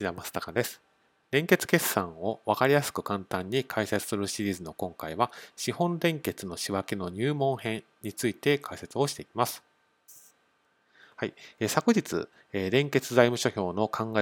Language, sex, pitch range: Japanese, male, 105-140 Hz